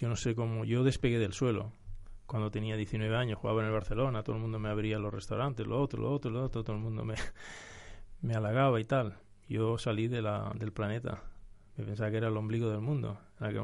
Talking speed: 225 wpm